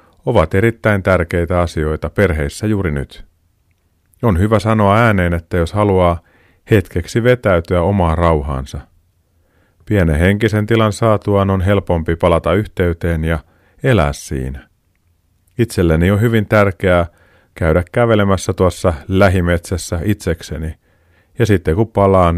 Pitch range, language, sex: 85-105 Hz, Finnish, male